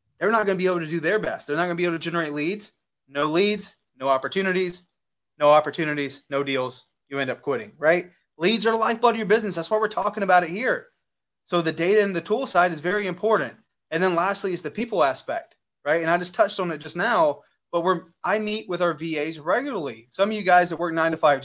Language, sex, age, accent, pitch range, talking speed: English, male, 20-39, American, 155-195 Hz, 245 wpm